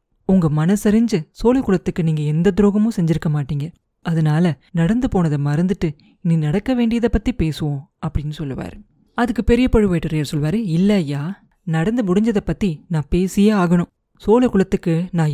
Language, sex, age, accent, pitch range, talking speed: Tamil, female, 30-49, native, 160-205 Hz, 125 wpm